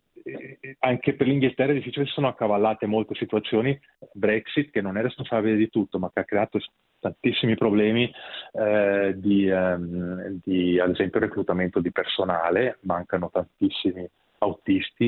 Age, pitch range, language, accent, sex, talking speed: 30-49, 95-115 Hz, Italian, native, male, 140 wpm